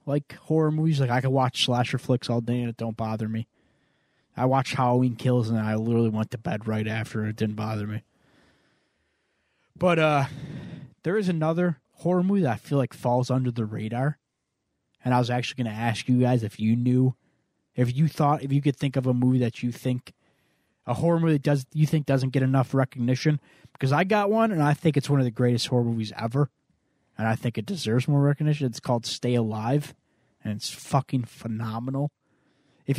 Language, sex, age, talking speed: English, male, 20-39, 210 wpm